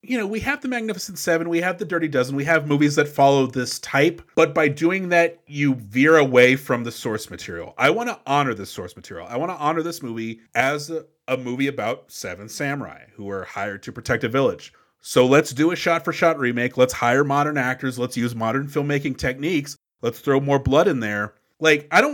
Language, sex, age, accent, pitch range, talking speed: English, male, 30-49, American, 120-170 Hz, 220 wpm